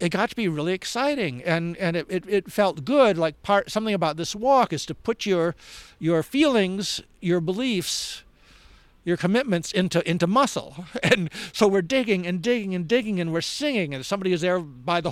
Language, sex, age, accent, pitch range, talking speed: English, male, 60-79, American, 160-205 Hz, 195 wpm